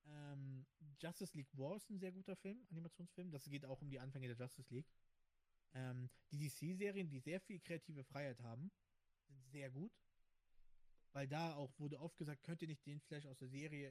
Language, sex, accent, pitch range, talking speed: German, male, German, 130-165 Hz, 195 wpm